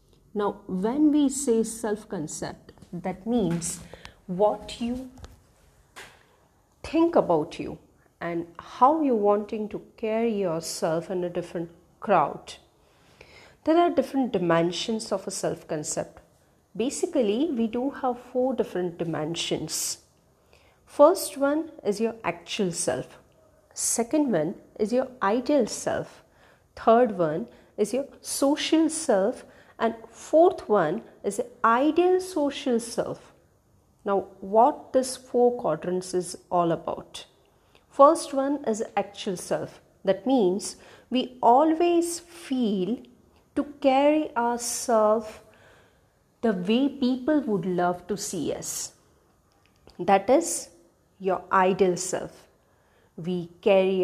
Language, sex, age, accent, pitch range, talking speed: Hindi, female, 40-59, native, 185-265 Hz, 110 wpm